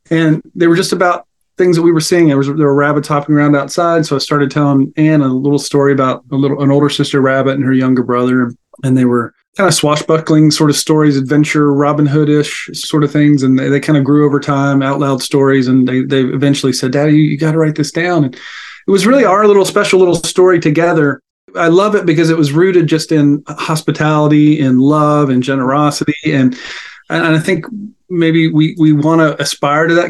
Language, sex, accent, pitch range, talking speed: English, male, American, 135-160 Hz, 225 wpm